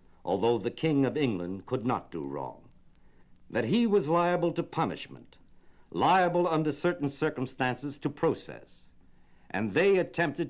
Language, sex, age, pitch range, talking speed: English, male, 60-79, 100-155 Hz, 135 wpm